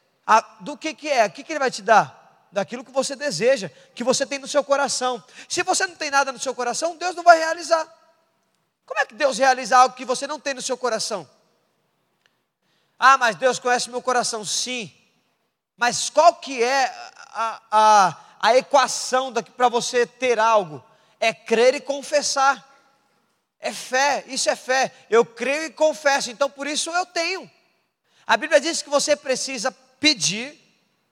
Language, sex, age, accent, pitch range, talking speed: Portuguese, male, 20-39, Brazilian, 225-290 Hz, 175 wpm